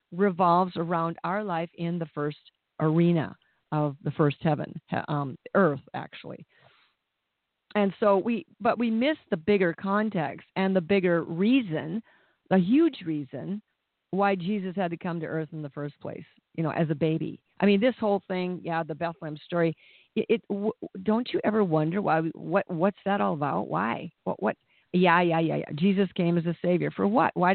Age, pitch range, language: 50-69, 165-205 Hz, English